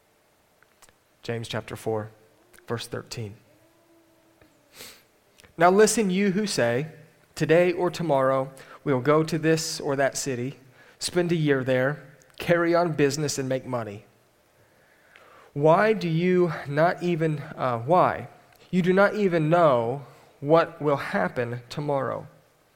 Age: 30-49